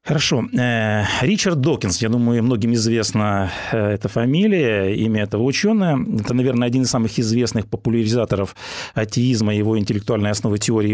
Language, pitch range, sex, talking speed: Russian, 115-160 Hz, male, 135 wpm